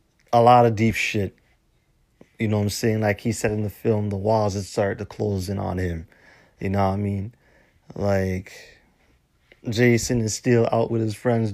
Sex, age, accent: male, 30-49, American